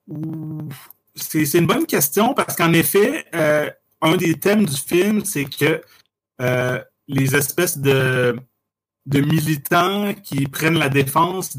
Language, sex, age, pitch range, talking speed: French, male, 30-49, 135-165 Hz, 135 wpm